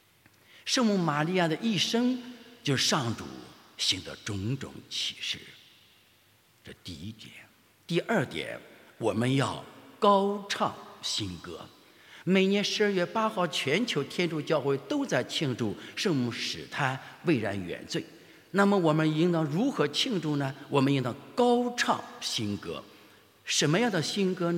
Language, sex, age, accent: English, male, 60-79, Chinese